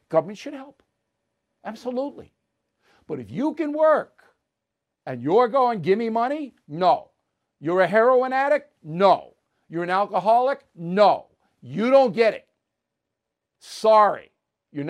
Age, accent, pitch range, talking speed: 60-79, American, 185-245 Hz, 125 wpm